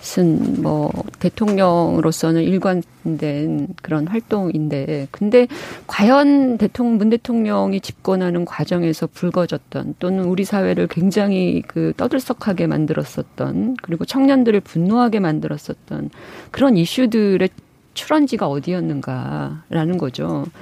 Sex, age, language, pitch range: female, 30-49, Korean, 165-240 Hz